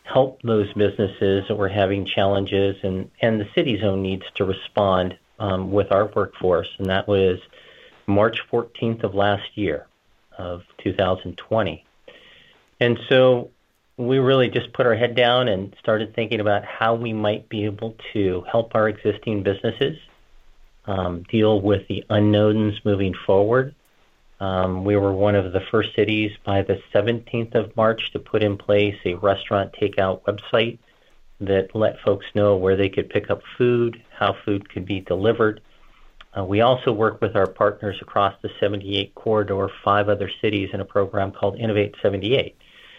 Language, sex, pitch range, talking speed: English, male, 95-110 Hz, 160 wpm